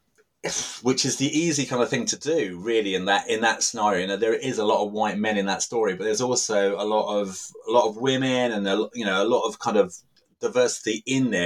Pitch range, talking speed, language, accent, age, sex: 100-140 Hz, 255 wpm, English, British, 30-49, male